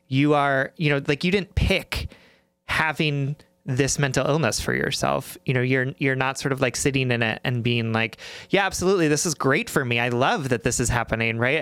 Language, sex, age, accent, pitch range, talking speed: English, male, 30-49, American, 125-155 Hz, 215 wpm